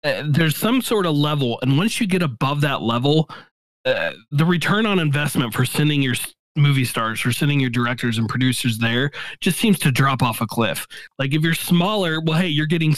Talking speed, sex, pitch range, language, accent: 210 wpm, male, 130-165 Hz, English, American